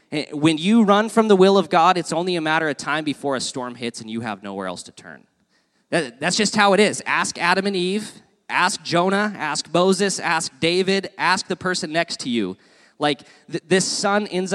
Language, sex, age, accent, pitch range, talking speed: English, male, 20-39, American, 145-195 Hz, 210 wpm